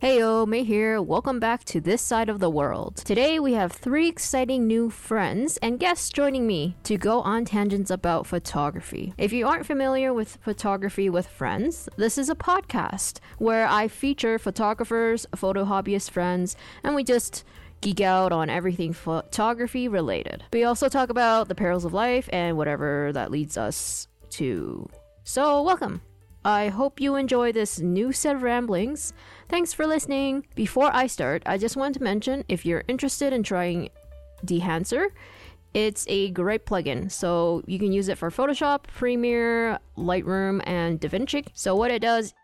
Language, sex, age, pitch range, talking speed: English, female, 10-29, 175-255 Hz, 165 wpm